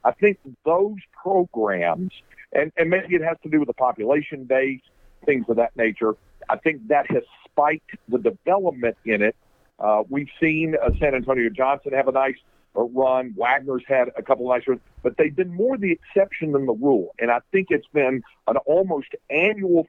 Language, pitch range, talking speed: English, 120-175 Hz, 190 wpm